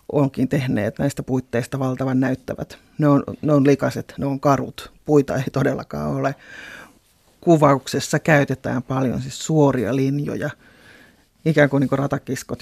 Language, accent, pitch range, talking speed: Finnish, native, 130-150 Hz, 130 wpm